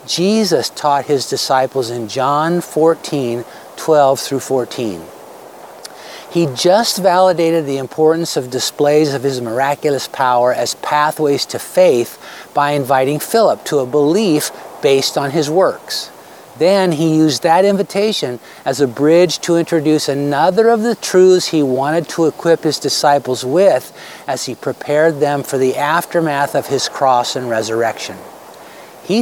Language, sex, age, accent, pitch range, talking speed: English, male, 50-69, American, 140-170 Hz, 140 wpm